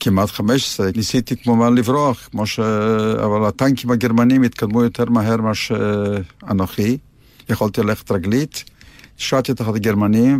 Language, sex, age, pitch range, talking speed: Hebrew, male, 60-79, 110-135 Hz, 125 wpm